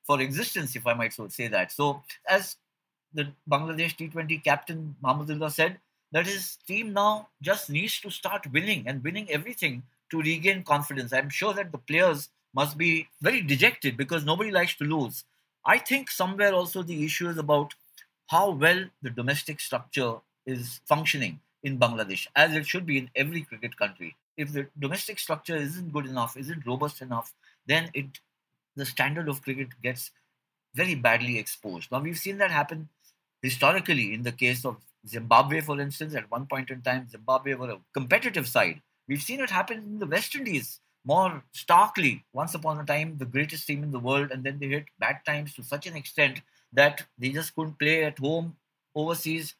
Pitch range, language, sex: 135-175 Hz, English, male